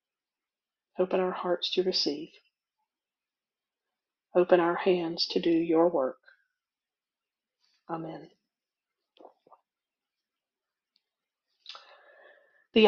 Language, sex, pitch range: English, female, 175-230 Hz